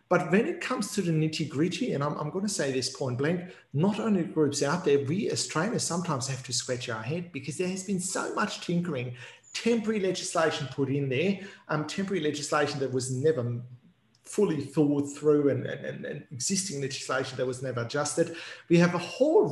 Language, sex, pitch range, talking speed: English, male, 140-170 Hz, 200 wpm